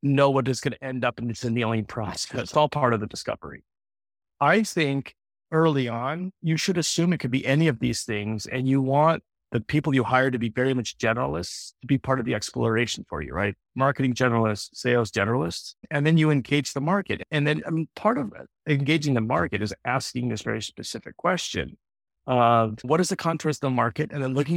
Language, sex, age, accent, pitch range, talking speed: English, male, 40-59, American, 115-150 Hz, 210 wpm